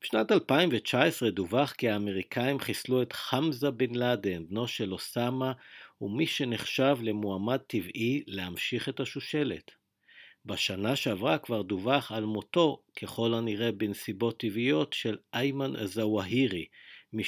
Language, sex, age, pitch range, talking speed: English, male, 50-69, 105-130 Hz, 120 wpm